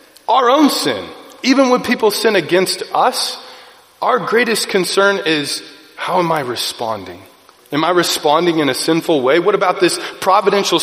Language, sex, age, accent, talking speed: English, male, 30-49, American, 155 wpm